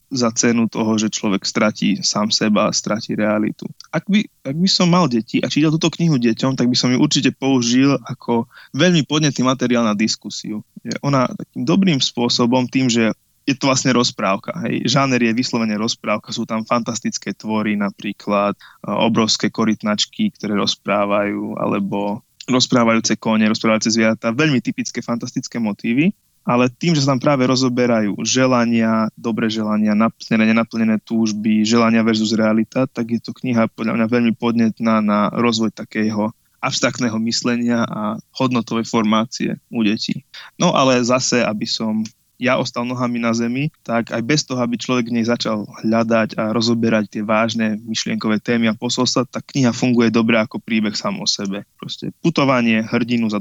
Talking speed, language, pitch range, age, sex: 155 wpm, Slovak, 110-130 Hz, 20-39, male